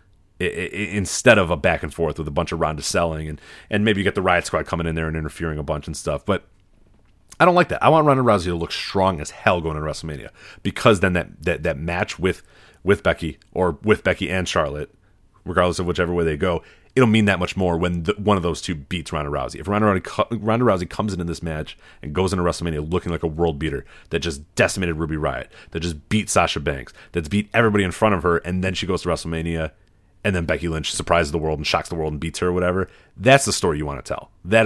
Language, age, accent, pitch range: English, 30-49, American, 80-100 Hz